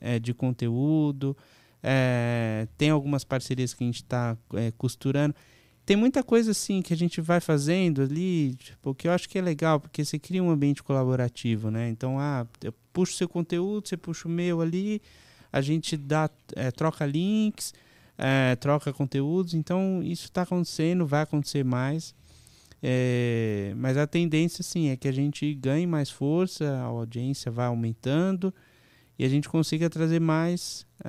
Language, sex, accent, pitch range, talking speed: Portuguese, male, Brazilian, 125-160 Hz, 170 wpm